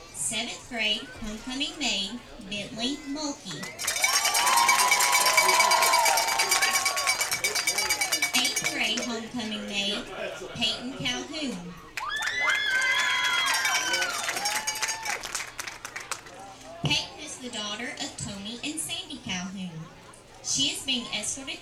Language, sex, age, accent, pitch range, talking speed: English, female, 30-49, American, 210-265 Hz, 70 wpm